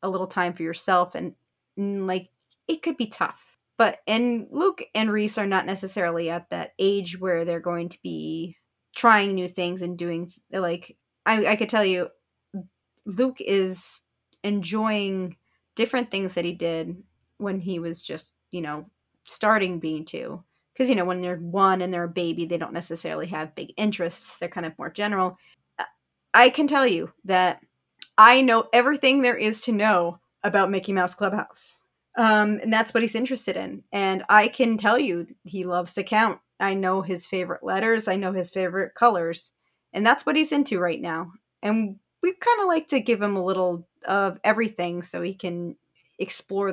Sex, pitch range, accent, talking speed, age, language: female, 175-220 Hz, American, 180 wpm, 30-49, English